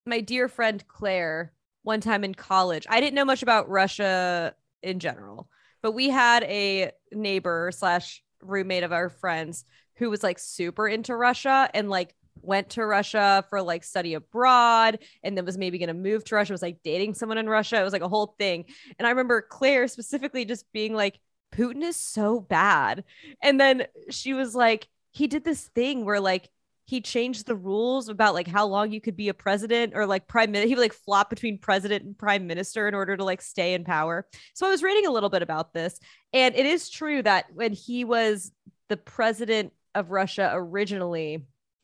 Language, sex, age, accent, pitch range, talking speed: English, female, 20-39, American, 190-235 Hz, 200 wpm